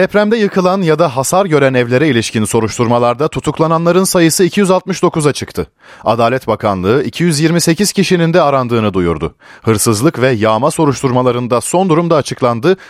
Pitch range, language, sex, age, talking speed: 115-180 Hz, Turkish, male, 40-59, 125 wpm